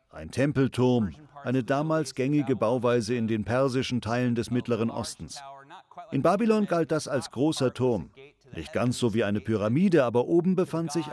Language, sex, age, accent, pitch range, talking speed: German, male, 40-59, German, 120-160 Hz, 160 wpm